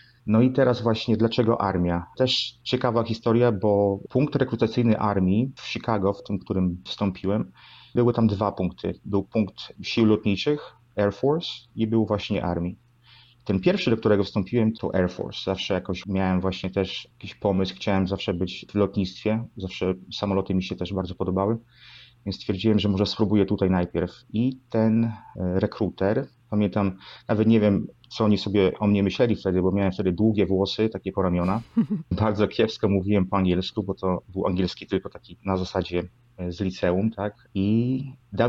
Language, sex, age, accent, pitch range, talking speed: Polish, male, 30-49, native, 95-115 Hz, 165 wpm